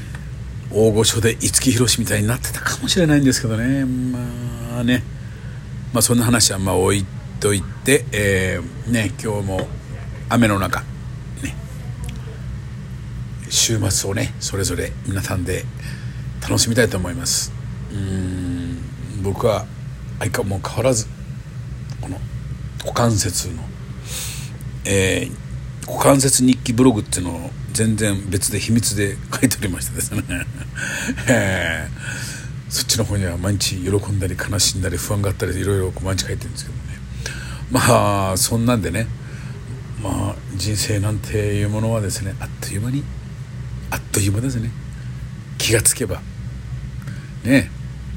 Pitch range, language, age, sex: 100-130 Hz, Japanese, 50-69, male